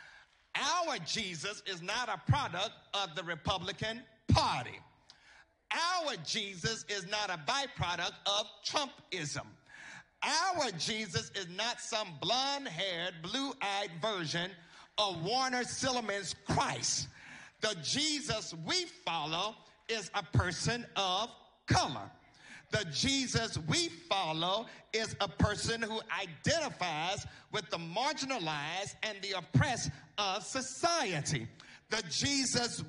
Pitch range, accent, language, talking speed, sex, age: 165-225 Hz, American, English, 105 wpm, male, 50-69